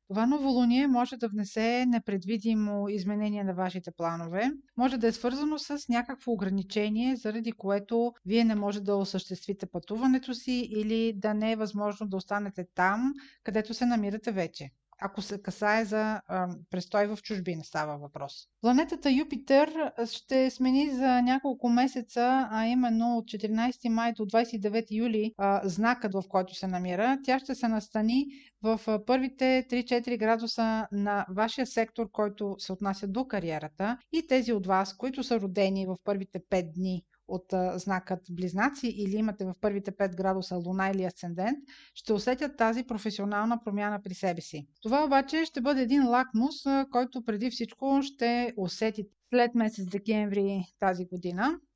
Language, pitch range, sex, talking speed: Bulgarian, 195-245 Hz, female, 150 wpm